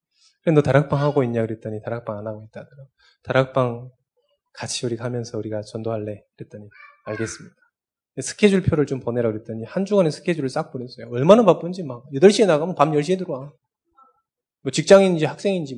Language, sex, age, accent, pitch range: Korean, male, 20-39, native, 125-185 Hz